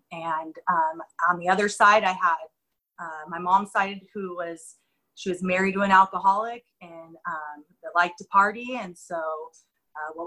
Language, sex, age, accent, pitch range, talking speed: English, female, 30-49, American, 180-220 Hz, 175 wpm